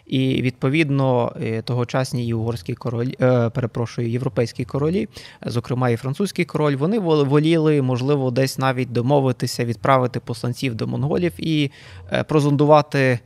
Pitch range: 125-150 Hz